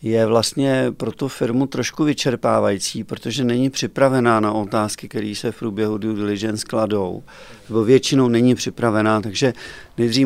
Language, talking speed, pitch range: Czech, 140 wpm, 110-130 Hz